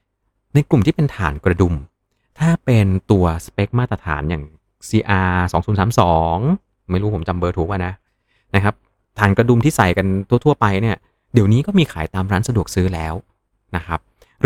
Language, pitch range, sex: Thai, 90-115 Hz, male